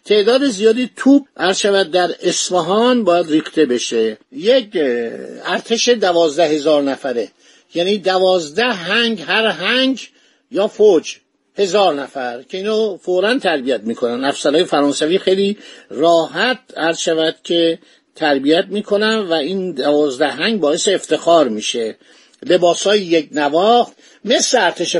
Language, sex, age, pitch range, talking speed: Persian, male, 50-69, 165-225 Hz, 115 wpm